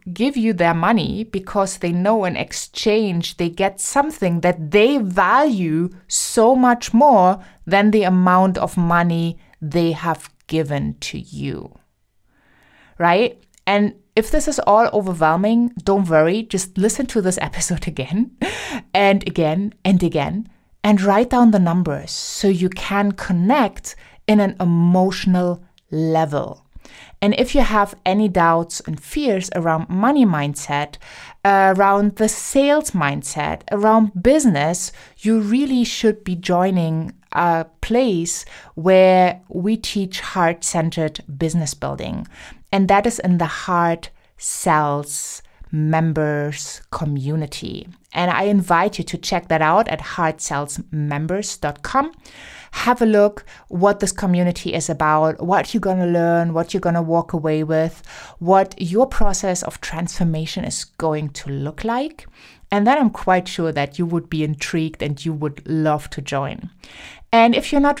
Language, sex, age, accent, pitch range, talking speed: English, female, 20-39, German, 165-210 Hz, 140 wpm